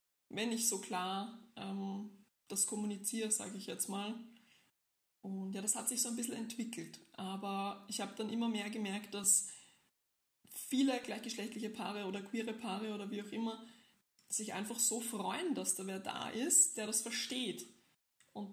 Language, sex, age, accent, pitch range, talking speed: German, female, 20-39, German, 200-235 Hz, 165 wpm